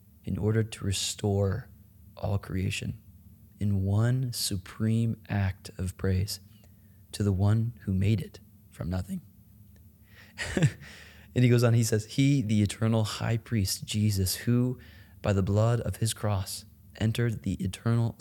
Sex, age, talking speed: male, 20-39, 140 wpm